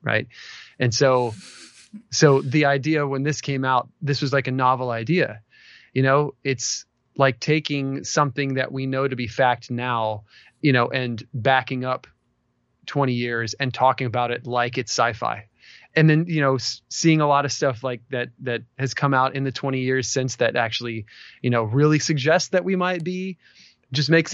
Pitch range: 120-145 Hz